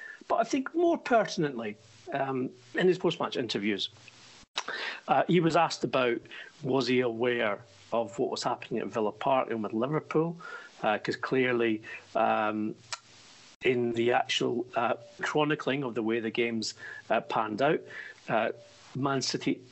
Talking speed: 145 wpm